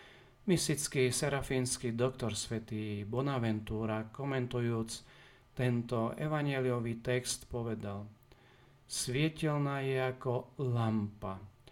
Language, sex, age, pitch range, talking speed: Slovak, male, 40-59, 115-135 Hz, 70 wpm